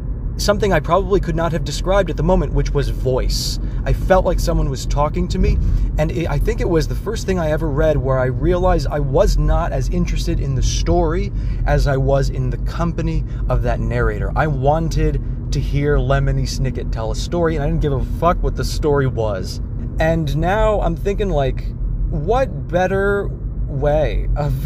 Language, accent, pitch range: English, American, 125-155 Hz